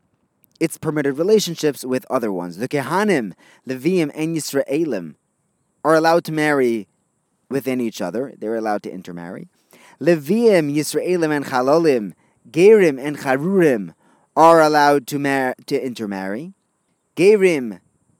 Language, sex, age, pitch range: English, male, 30-49, 125-170 Hz